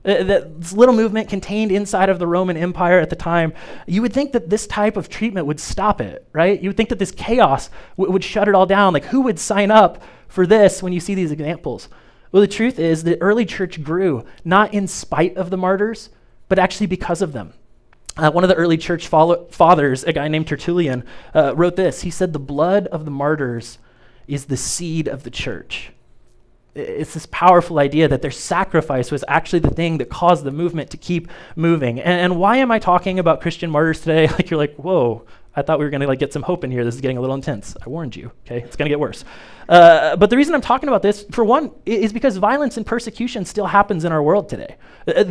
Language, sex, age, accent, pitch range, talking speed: English, male, 30-49, American, 150-200 Hz, 230 wpm